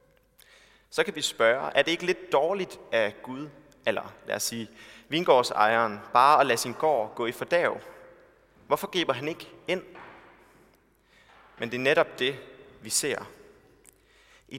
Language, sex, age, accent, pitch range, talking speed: Danish, male, 30-49, native, 130-180 Hz, 150 wpm